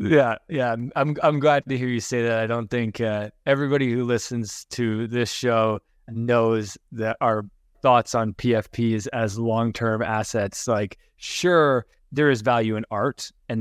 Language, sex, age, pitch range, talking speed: English, male, 20-39, 110-130 Hz, 165 wpm